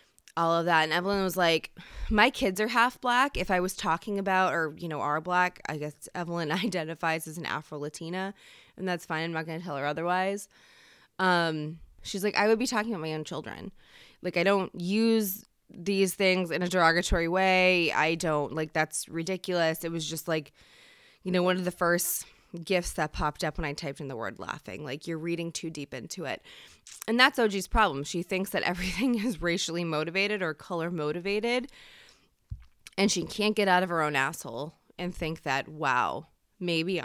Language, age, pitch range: English, 20-39, 160-200 Hz